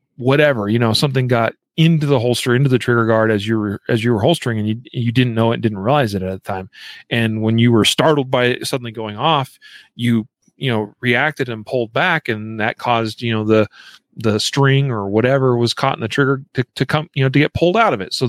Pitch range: 110-140 Hz